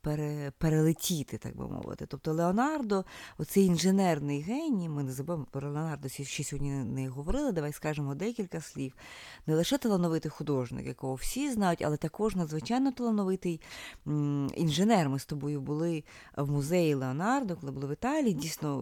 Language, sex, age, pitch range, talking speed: Ukrainian, female, 20-39, 145-200 Hz, 145 wpm